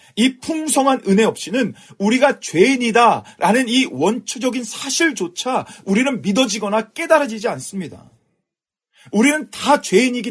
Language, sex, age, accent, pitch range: Korean, male, 40-59, native, 195-265 Hz